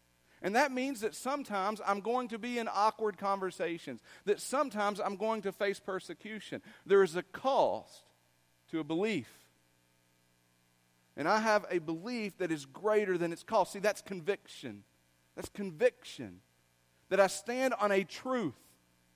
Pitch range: 160-235 Hz